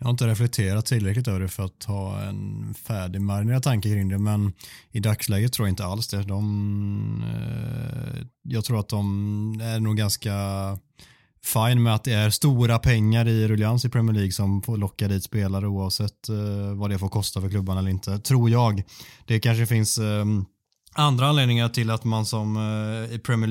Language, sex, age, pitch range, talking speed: Swedish, male, 20-39, 105-125 Hz, 180 wpm